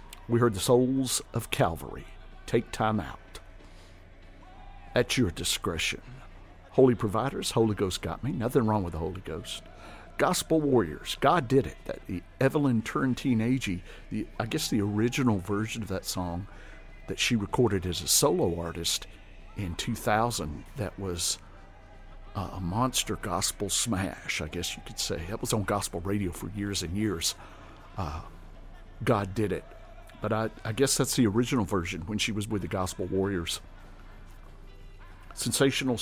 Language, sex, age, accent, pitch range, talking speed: English, male, 50-69, American, 90-115 Hz, 155 wpm